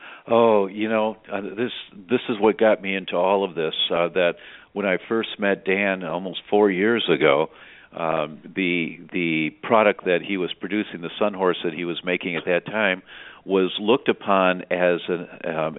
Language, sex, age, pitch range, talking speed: English, male, 50-69, 80-105 Hz, 190 wpm